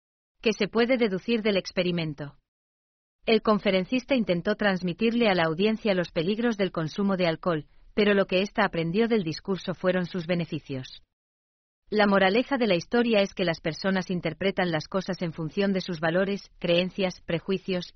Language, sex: German, female